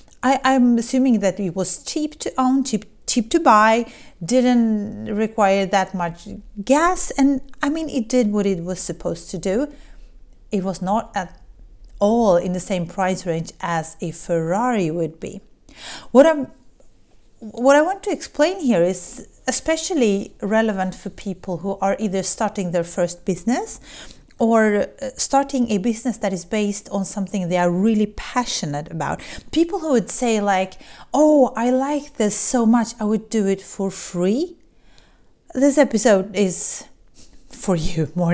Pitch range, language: 190-260 Hz, English